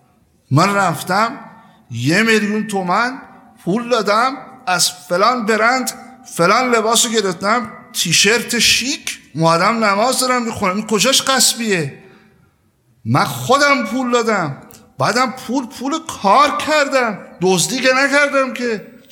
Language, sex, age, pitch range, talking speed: Persian, male, 50-69, 185-250 Hz, 105 wpm